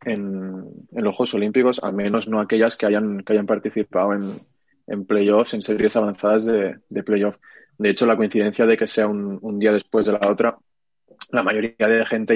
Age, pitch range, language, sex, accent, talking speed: 20-39, 105-115 Hz, English, male, Spanish, 200 wpm